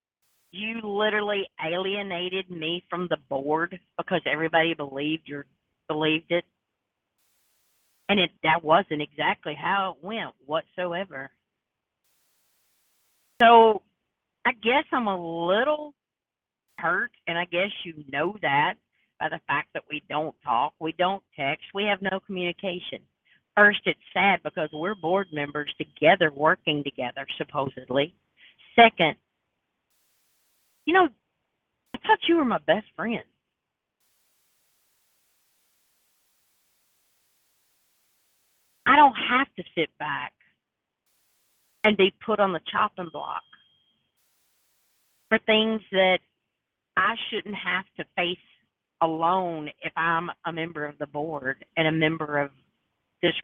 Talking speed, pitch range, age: 115 wpm, 155-200 Hz, 50-69